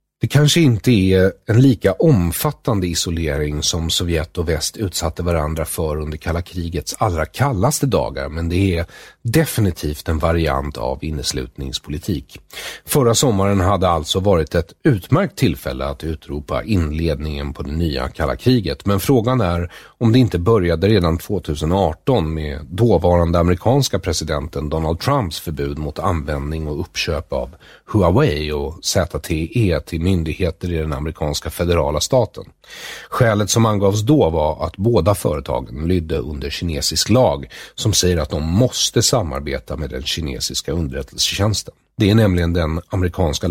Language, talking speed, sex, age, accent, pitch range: English, 140 wpm, male, 40-59, Swedish, 75-100 Hz